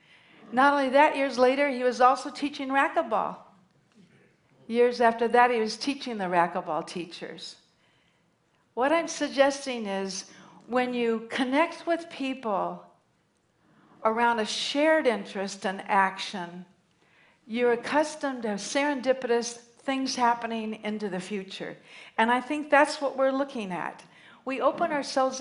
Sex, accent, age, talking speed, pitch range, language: female, American, 60-79, 130 wpm, 220-280 Hz, Russian